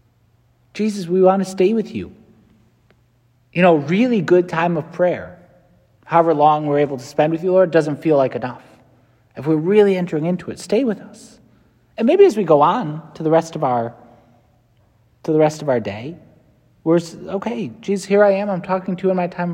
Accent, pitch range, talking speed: American, 120-170 Hz, 205 wpm